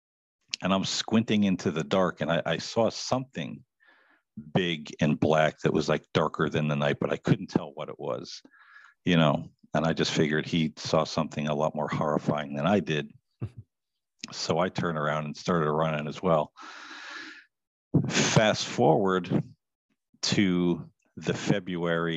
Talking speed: 155 wpm